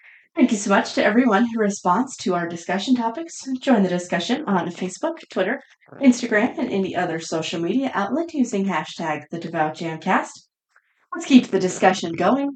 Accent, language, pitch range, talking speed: American, English, 175-250 Hz, 165 wpm